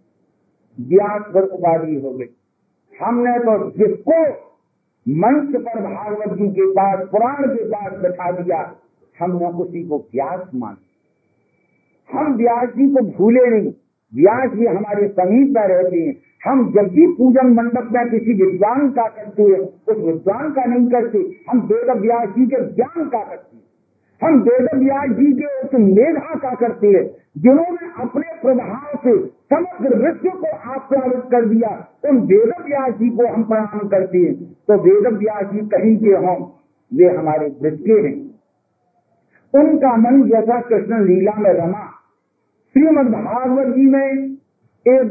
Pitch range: 205-260 Hz